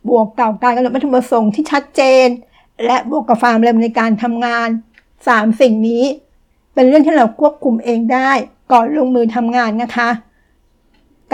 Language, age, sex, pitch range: Thai, 60-79, female, 230-270 Hz